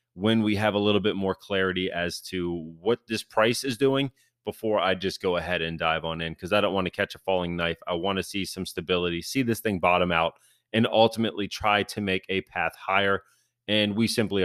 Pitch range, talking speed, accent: 95-130 Hz, 230 wpm, American